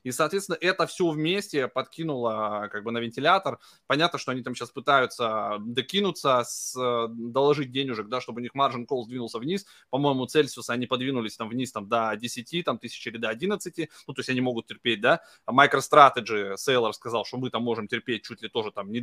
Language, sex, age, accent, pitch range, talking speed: Russian, male, 20-39, native, 120-160 Hz, 190 wpm